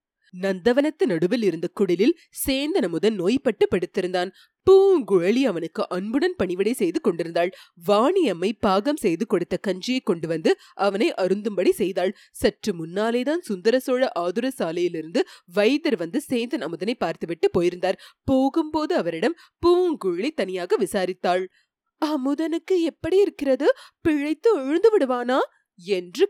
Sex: female